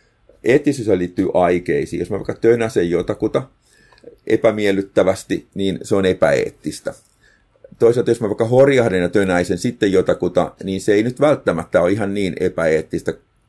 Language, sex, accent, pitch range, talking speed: Finnish, male, native, 90-110 Hz, 140 wpm